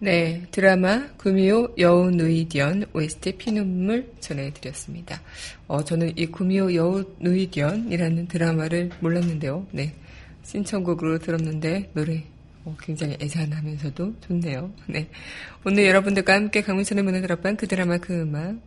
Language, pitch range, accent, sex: Korean, 160-200 Hz, native, female